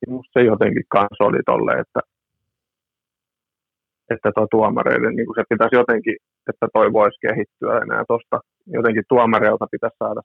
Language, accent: Finnish, native